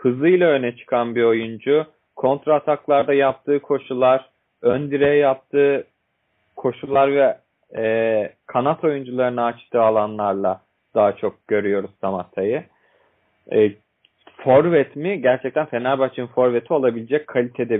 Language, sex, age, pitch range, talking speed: Turkish, male, 40-59, 110-140 Hz, 105 wpm